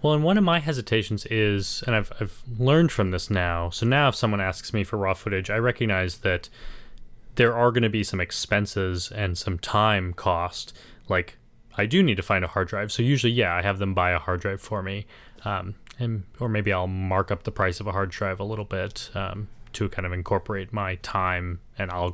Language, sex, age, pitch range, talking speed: English, male, 20-39, 95-115 Hz, 225 wpm